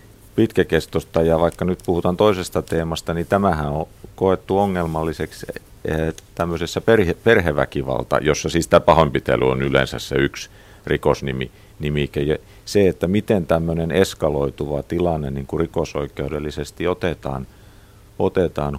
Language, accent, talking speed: Finnish, native, 100 wpm